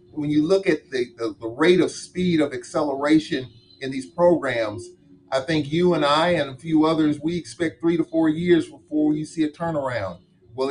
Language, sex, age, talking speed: English, male, 40-59, 200 wpm